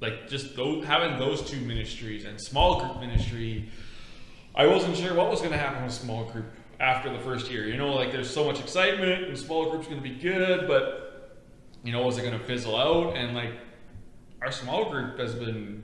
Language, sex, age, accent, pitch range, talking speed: English, male, 20-39, American, 120-145 Hz, 195 wpm